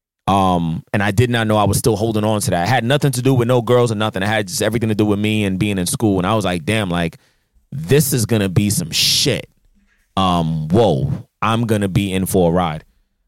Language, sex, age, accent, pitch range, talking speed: English, male, 30-49, American, 110-135 Hz, 260 wpm